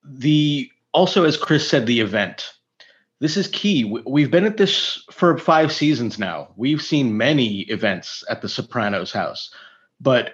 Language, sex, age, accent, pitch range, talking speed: English, male, 30-49, American, 110-150 Hz, 165 wpm